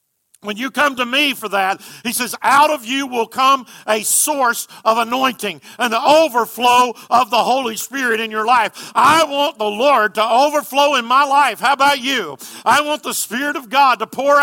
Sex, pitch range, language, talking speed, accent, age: male, 175-250 Hz, English, 200 wpm, American, 50-69